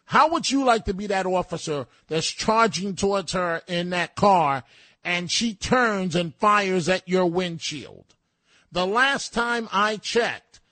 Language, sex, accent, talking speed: English, male, American, 155 wpm